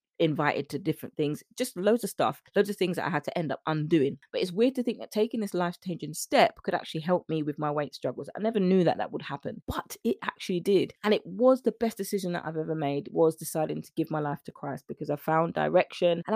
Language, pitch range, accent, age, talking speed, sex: English, 155-190 Hz, British, 20-39, 260 wpm, female